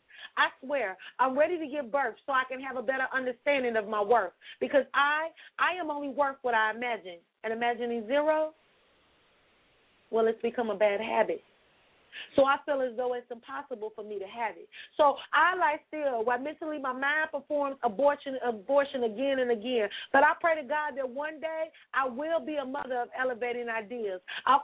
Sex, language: female, English